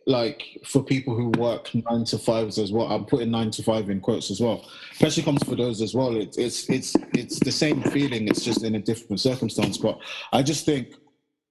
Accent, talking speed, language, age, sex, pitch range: British, 220 wpm, English, 20-39, male, 115-145 Hz